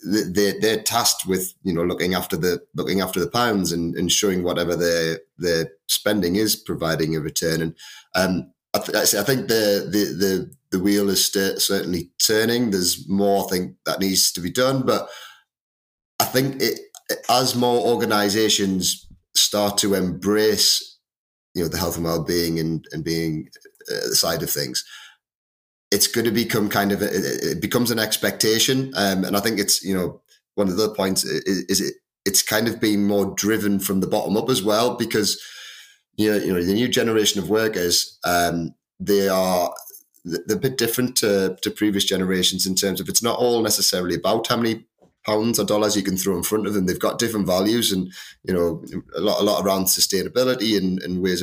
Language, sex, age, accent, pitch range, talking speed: English, male, 30-49, British, 90-110 Hz, 195 wpm